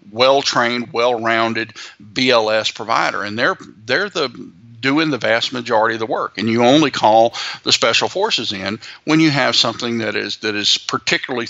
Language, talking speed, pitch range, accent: English, 175 wpm, 110-135 Hz, American